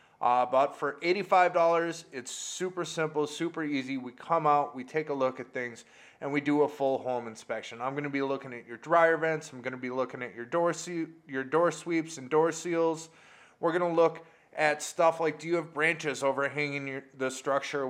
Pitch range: 120-150 Hz